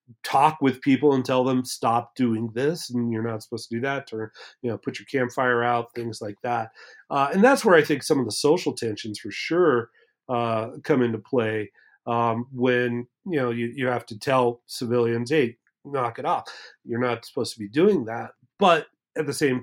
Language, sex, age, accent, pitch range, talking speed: English, male, 40-59, American, 120-145 Hz, 210 wpm